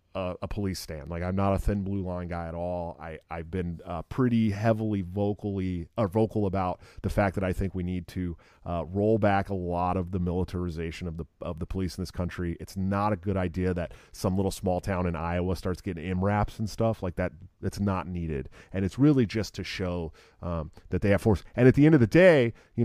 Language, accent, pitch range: English, American, 90-110 Hz